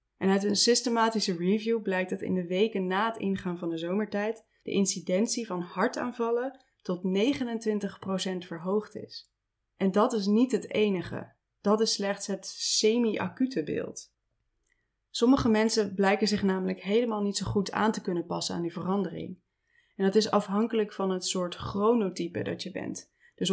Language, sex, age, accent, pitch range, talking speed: Dutch, female, 20-39, Dutch, 185-225 Hz, 165 wpm